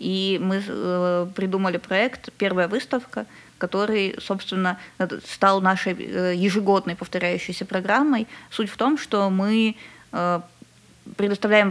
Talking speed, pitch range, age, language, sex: 95 wpm, 185-210 Hz, 20-39, Ukrainian, female